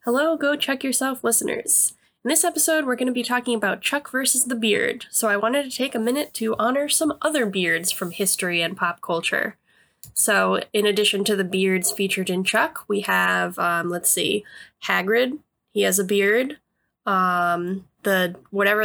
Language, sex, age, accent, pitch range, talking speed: English, female, 10-29, American, 190-260 Hz, 180 wpm